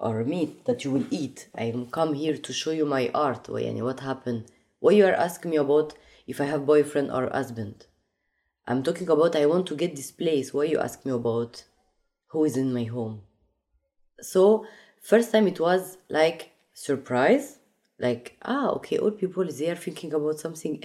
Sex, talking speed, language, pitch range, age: female, 185 wpm, English, 130-185 Hz, 20-39